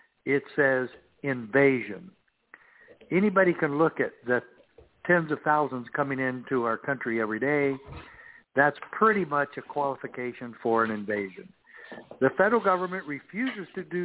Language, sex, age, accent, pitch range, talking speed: English, male, 60-79, American, 125-155 Hz, 130 wpm